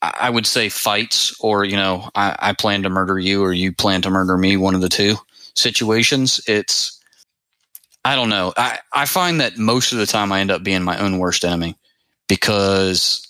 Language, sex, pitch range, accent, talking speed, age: English, male, 95-110 Hz, American, 205 wpm, 30-49